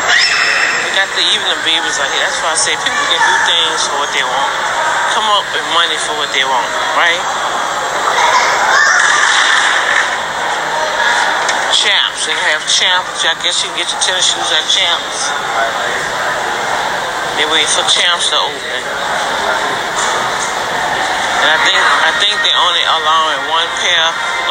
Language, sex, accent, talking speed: English, male, American, 135 wpm